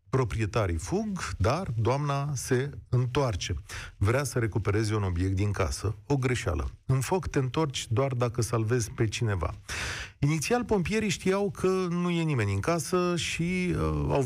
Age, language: 40-59, Romanian